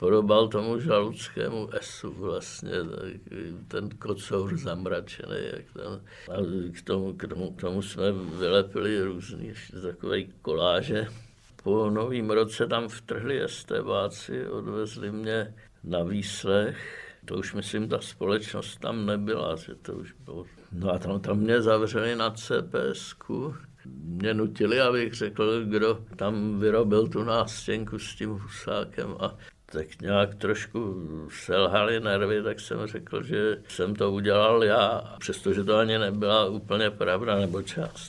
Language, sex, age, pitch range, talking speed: Czech, male, 60-79, 100-115 Hz, 130 wpm